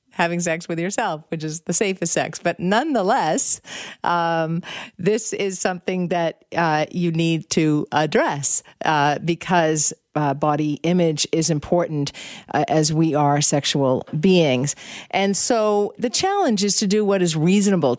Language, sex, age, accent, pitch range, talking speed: English, female, 50-69, American, 160-220 Hz, 145 wpm